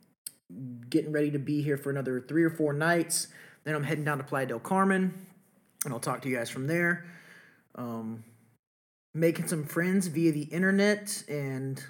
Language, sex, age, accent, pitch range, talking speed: English, male, 30-49, American, 130-170 Hz, 175 wpm